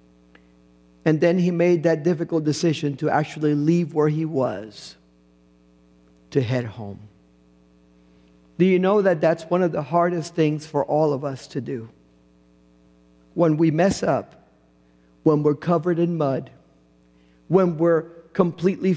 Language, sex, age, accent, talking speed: English, male, 50-69, American, 140 wpm